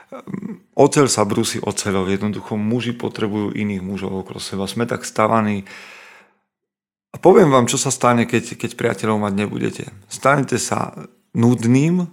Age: 40-59